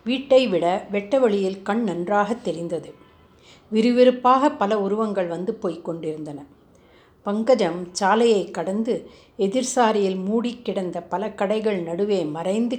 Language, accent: Tamil, native